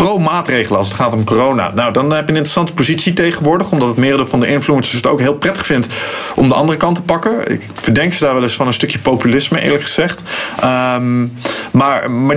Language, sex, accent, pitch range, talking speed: Dutch, male, Dutch, 120-155 Hz, 230 wpm